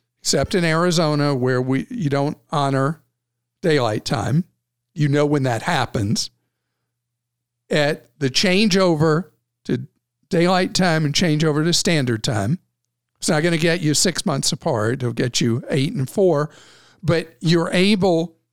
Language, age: English, 50-69